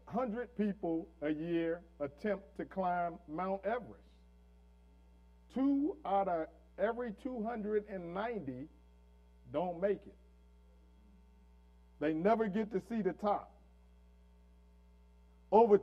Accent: American